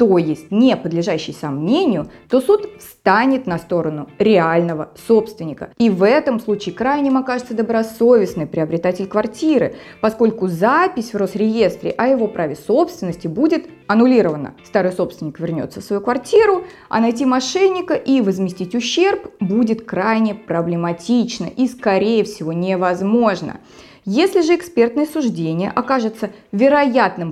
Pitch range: 180-250 Hz